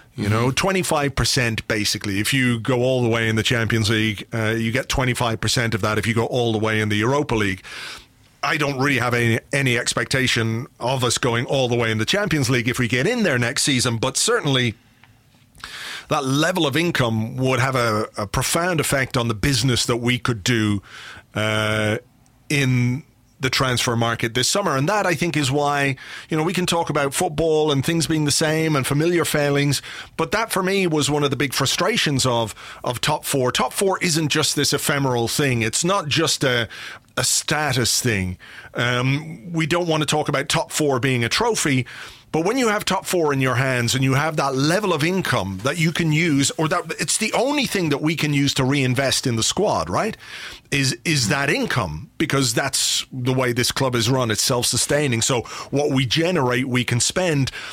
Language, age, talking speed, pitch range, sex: English, 40-59, 210 wpm, 120-150 Hz, male